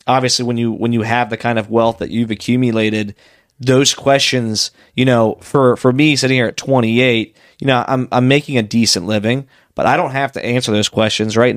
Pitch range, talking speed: 110-125 Hz, 215 wpm